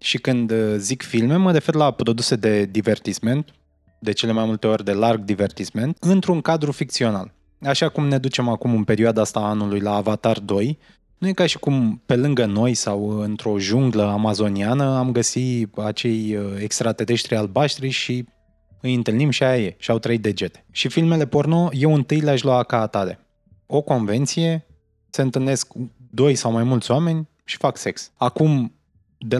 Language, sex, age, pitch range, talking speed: Romanian, male, 20-39, 110-135 Hz, 170 wpm